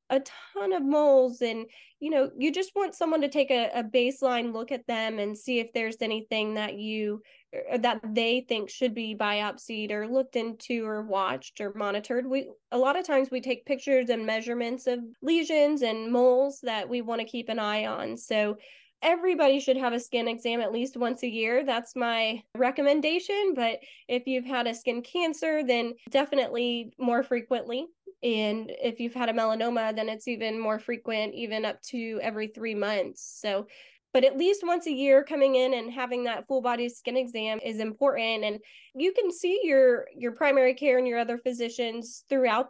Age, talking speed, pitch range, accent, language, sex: 20-39, 190 wpm, 225-270 Hz, American, English, female